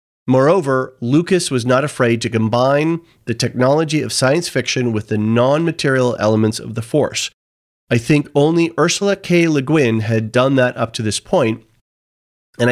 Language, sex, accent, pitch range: English, male, American, 115-140 Hz